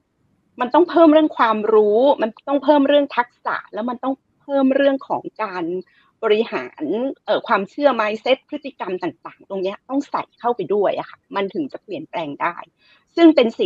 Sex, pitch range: female, 200-290 Hz